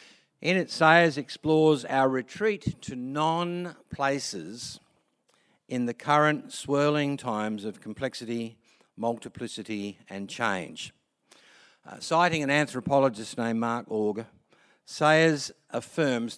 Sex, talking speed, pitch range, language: male, 100 wpm, 115-160 Hz, English